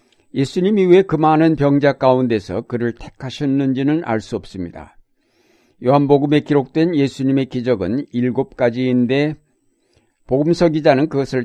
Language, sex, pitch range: Korean, male, 120-150 Hz